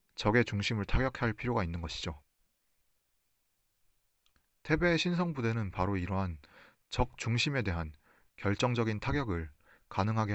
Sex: male